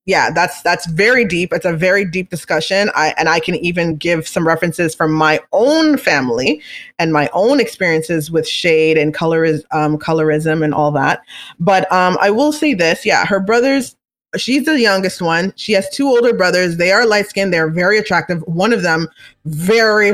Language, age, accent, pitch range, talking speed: English, 20-39, American, 170-235 Hz, 190 wpm